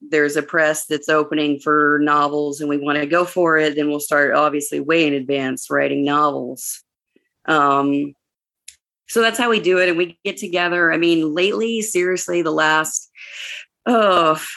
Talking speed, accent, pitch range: 170 wpm, American, 150-180 Hz